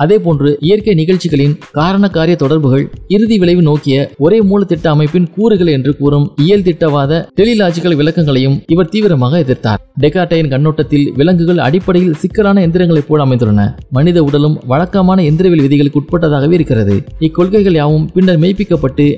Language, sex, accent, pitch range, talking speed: Tamil, male, native, 145-180 Hz, 125 wpm